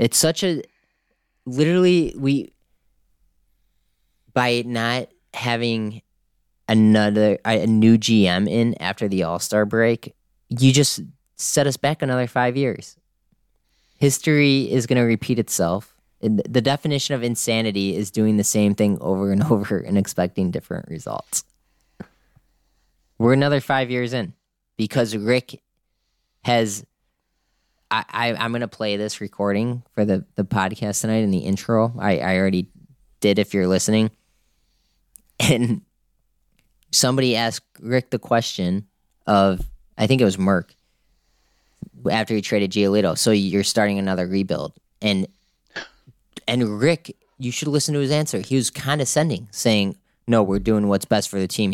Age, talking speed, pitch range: 20-39, 140 wpm, 95-125 Hz